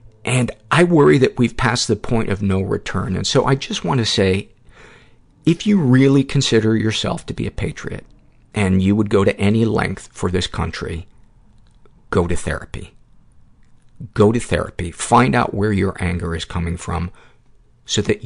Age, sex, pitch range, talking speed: 50-69, male, 95-115 Hz, 175 wpm